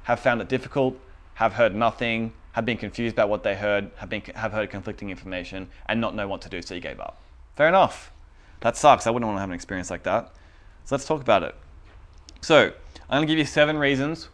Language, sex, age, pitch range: English, male, 20-39, 100-135 Hz